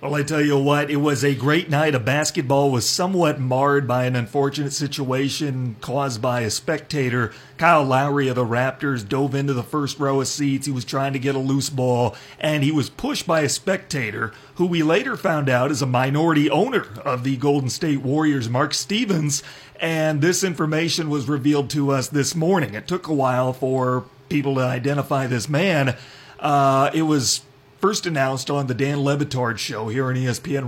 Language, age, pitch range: English, 40-59, 130-150 Hz